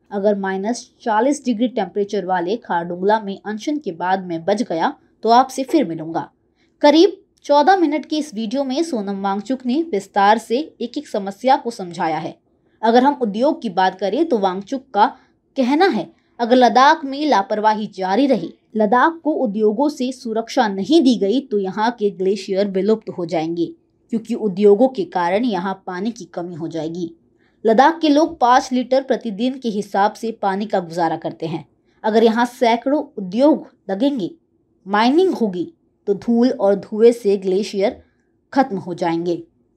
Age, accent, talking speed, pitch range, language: 20-39, native, 165 wpm, 195-265 Hz, Hindi